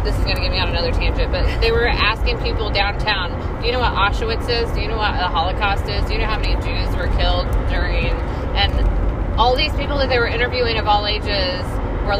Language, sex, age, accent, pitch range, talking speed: English, female, 20-39, American, 80-100 Hz, 240 wpm